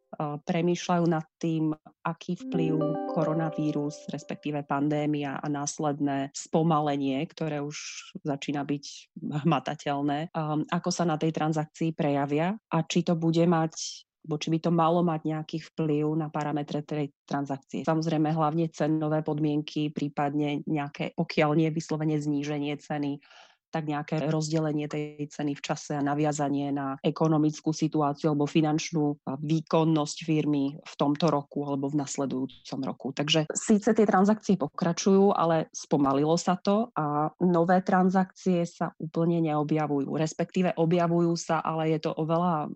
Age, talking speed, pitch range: 30-49, 130 wpm, 145-165 Hz